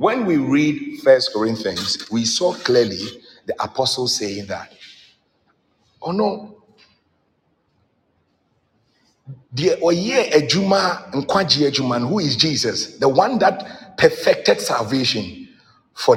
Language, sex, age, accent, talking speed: English, male, 50-69, Nigerian, 85 wpm